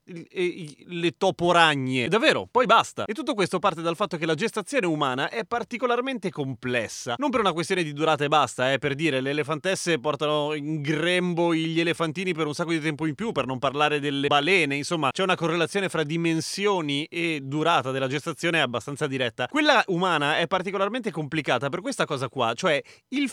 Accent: native